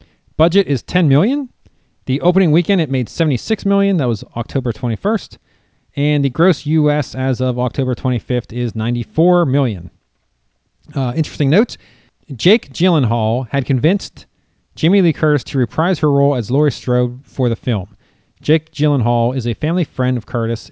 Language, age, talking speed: English, 40-59, 155 wpm